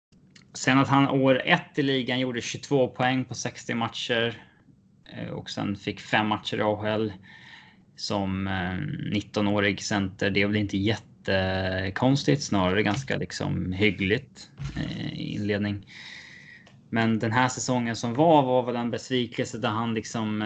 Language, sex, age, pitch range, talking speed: Swedish, male, 20-39, 100-120 Hz, 135 wpm